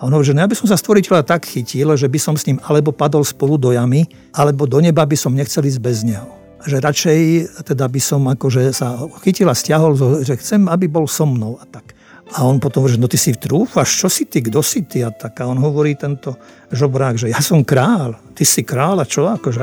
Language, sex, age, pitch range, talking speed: Slovak, male, 50-69, 125-150 Hz, 250 wpm